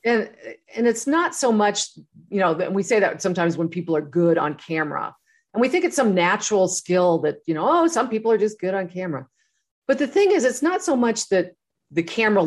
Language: English